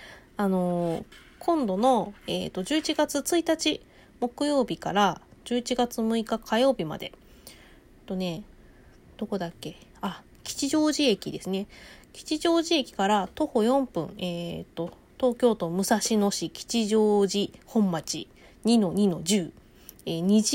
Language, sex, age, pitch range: Japanese, female, 20-39, 185-260 Hz